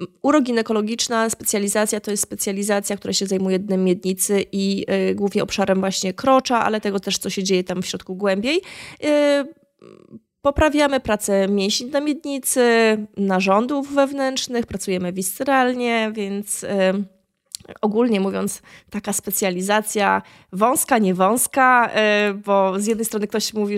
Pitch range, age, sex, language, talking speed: 195-240 Hz, 20-39, female, Polish, 125 wpm